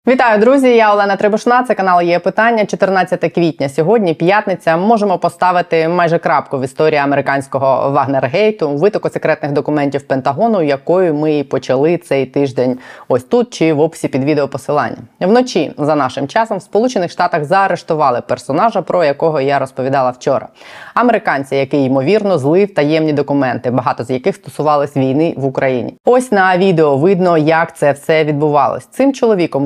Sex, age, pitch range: female, 20-39, 140-180 Hz